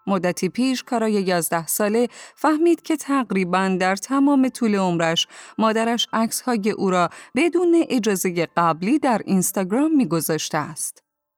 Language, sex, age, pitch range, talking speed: Persian, female, 30-49, 175-245 Hz, 120 wpm